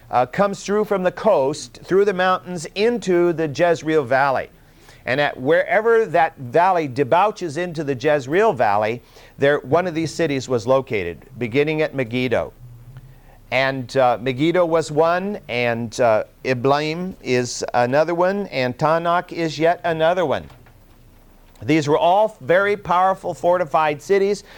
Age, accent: 50-69, American